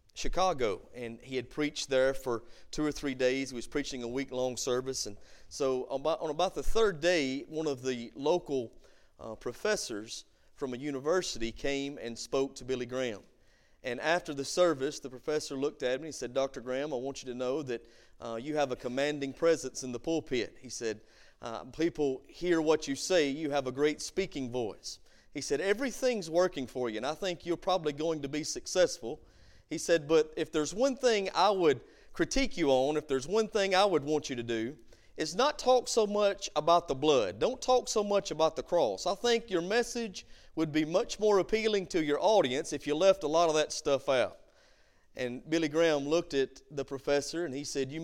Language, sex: English, male